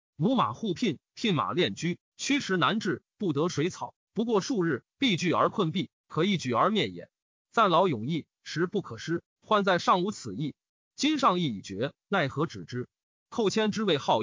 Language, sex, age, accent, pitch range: Chinese, male, 30-49, native, 150-210 Hz